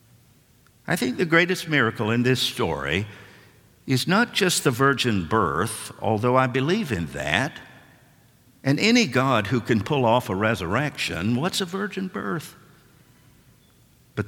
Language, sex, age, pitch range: English, male, 60-79, 105-150 Hz